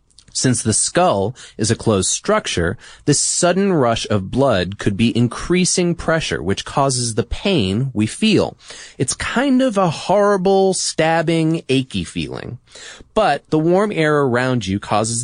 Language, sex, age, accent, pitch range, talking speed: English, male, 30-49, American, 105-160 Hz, 145 wpm